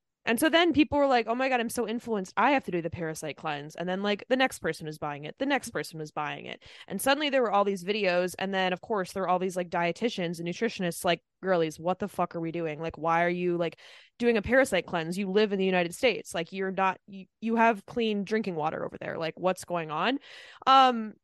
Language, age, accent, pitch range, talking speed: English, 20-39, American, 180-235 Hz, 260 wpm